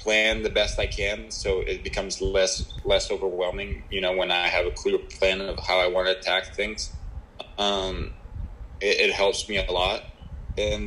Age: 20-39